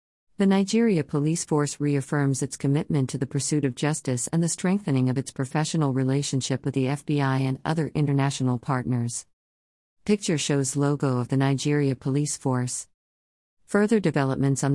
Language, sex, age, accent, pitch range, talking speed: English, female, 50-69, American, 130-155 Hz, 150 wpm